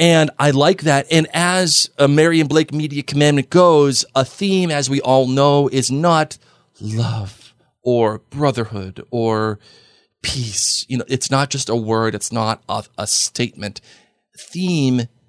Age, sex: 40-59, male